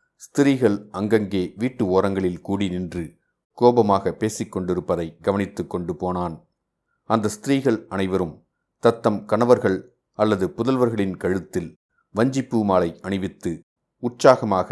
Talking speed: 90 wpm